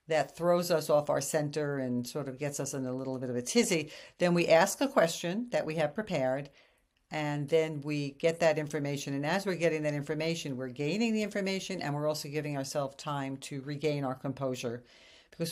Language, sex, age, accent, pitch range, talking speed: English, female, 50-69, American, 140-180 Hz, 210 wpm